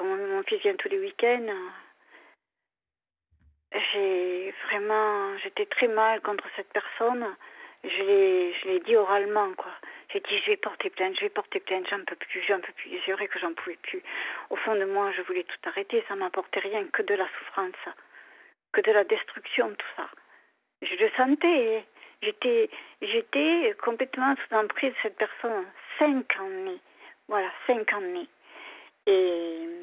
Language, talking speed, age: French, 165 wpm, 40-59